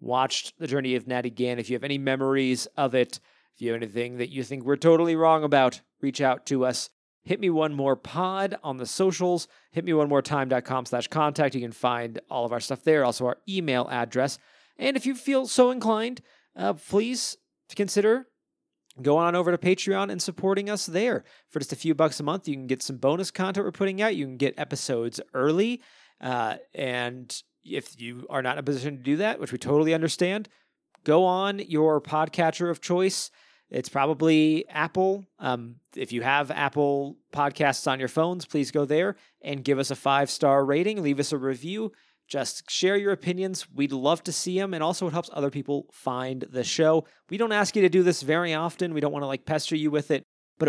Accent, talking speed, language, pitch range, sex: American, 215 wpm, English, 135-180 Hz, male